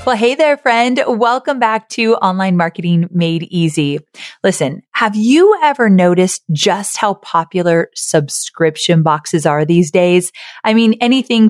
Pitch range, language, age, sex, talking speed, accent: 185-245 Hz, English, 30-49, female, 140 wpm, American